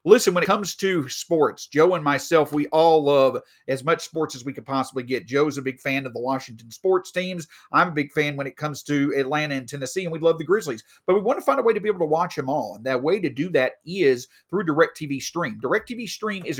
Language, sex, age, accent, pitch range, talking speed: English, male, 40-59, American, 135-190 Hz, 260 wpm